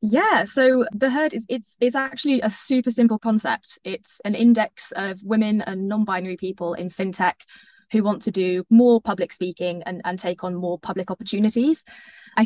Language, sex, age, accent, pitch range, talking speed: English, female, 20-39, British, 185-225 Hz, 180 wpm